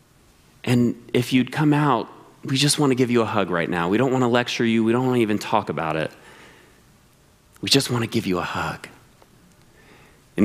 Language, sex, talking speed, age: English, male, 220 wpm, 30-49